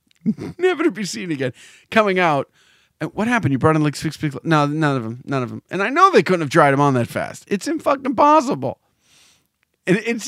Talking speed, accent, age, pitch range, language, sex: 235 wpm, American, 40-59, 125-180 Hz, English, male